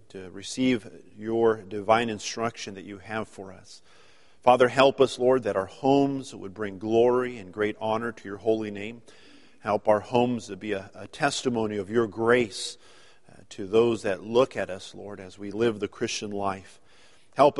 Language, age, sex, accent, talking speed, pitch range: English, 40-59, male, American, 180 wpm, 105-135 Hz